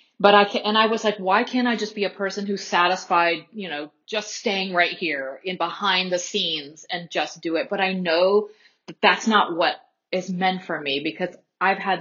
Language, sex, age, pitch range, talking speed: English, female, 30-49, 170-210 Hz, 215 wpm